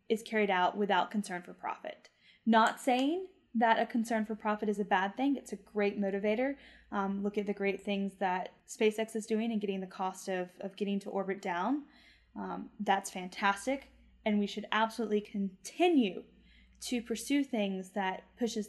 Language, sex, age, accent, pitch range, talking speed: English, female, 10-29, American, 190-220 Hz, 175 wpm